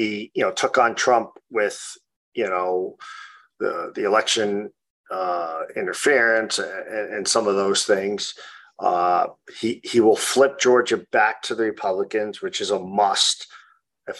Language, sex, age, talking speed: English, male, 40-59, 150 wpm